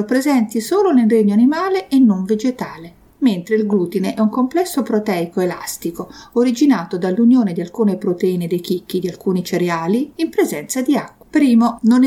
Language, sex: Italian, female